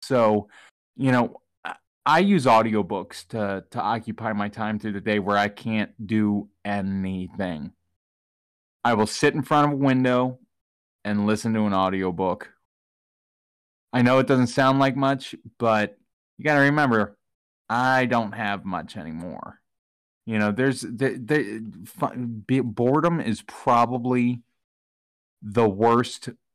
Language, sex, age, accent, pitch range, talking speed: English, male, 30-49, American, 100-130 Hz, 140 wpm